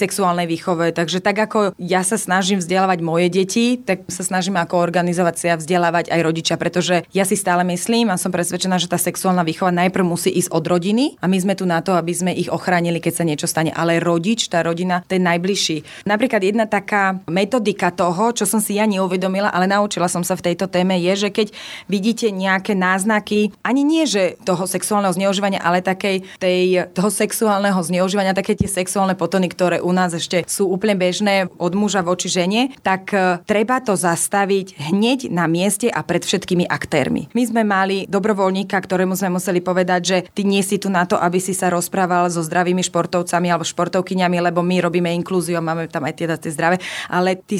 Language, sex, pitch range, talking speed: Slovak, female, 175-200 Hz, 195 wpm